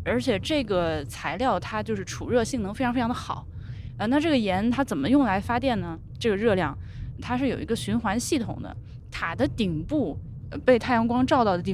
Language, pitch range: Chinese, 170-250 Hz